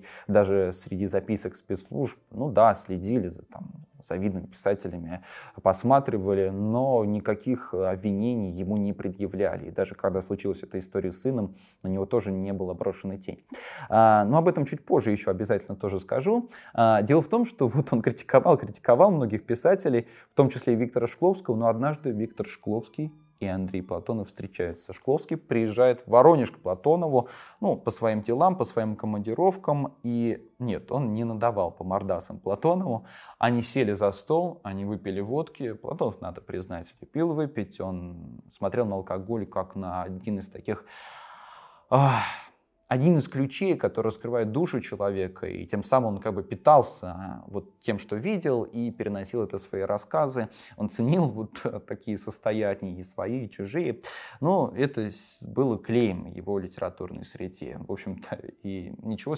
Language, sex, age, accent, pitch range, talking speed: Russian, male, 20-39, native, 95-125 Hz, 150 wpm